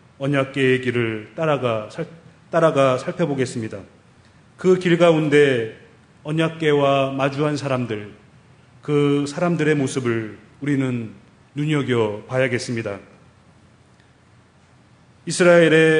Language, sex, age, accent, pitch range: Korean, male, 30-49, native, 115-150 Hz